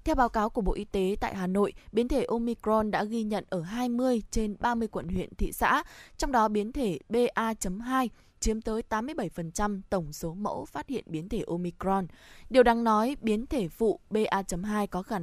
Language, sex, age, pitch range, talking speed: Vietnamese, female, 20-39, 185-230 Hz, 195 wpm